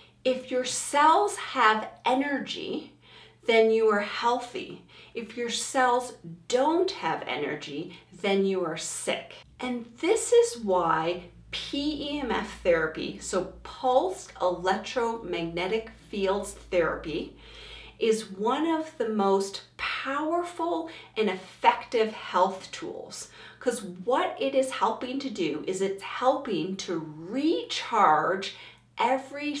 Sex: female